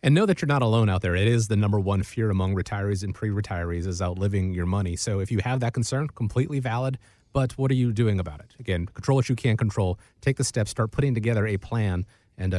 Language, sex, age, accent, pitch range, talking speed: English, male, 30-49, American, 100-130 Hz, 250 wpm